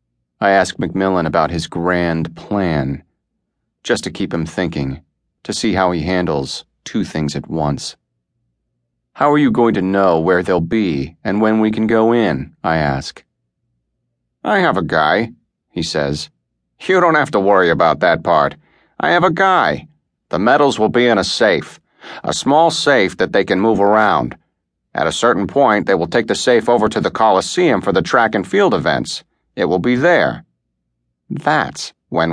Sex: male